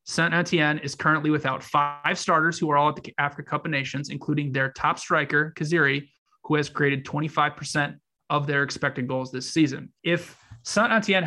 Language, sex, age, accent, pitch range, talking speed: English, male, 20-39, American, 135-155 Hz, 170 wpm